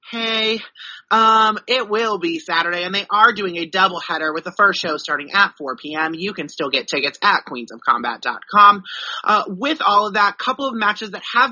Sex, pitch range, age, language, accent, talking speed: male, 170-220 Hz, 30-49, English, American, 205 wpm